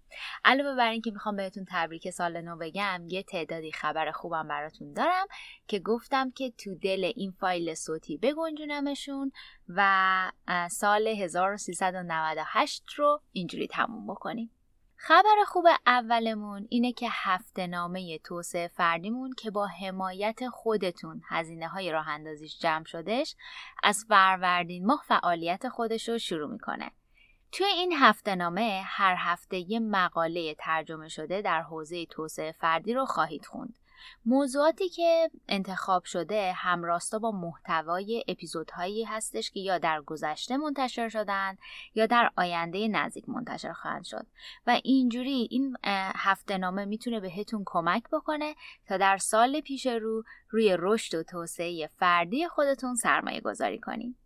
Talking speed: 130 wpm